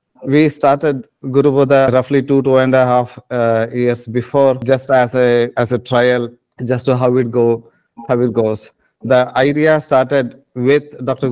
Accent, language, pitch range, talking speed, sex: Indian, English, 125-140 Hz, 170 wpm, male